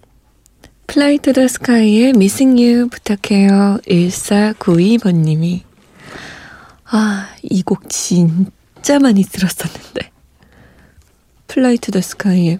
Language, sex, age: Korean, female, 20-39